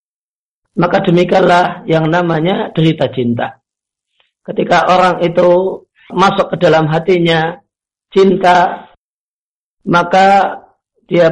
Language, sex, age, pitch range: Indonesian, male, 50-69, 150-185 Hz